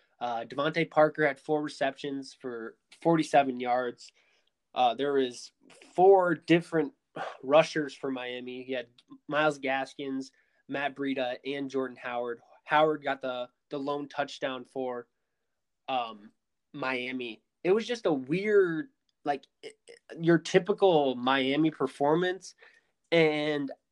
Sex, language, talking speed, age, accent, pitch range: male, English, 120 wpm, 20-39, American, 125-155 Hz